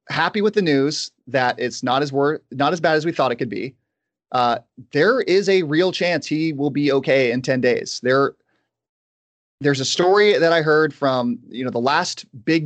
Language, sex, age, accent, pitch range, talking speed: English, male, 30-49, American, 125-150 Hz, 210 wpm